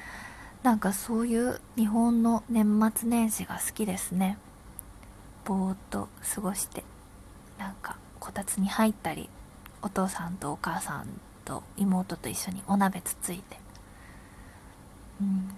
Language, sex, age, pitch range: Japanese, female, 20-39, 185-260 Hz